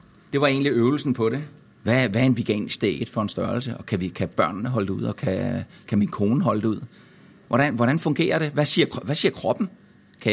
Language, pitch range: Danish, 100-130 Hz